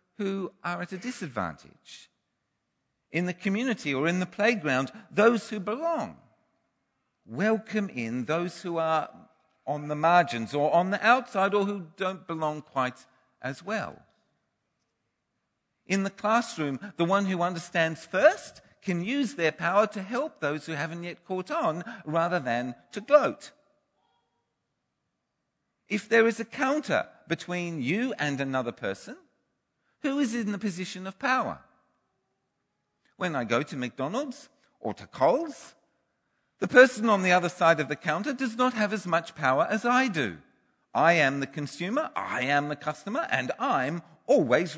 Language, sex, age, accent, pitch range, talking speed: English, male, 50-69, British, 150-220 Hz, 150 wpm